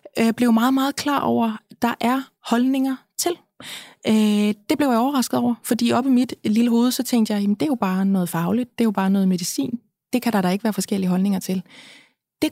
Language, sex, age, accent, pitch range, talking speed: Danish, female, 20-39, native, 200-250 Hz, 230 wpm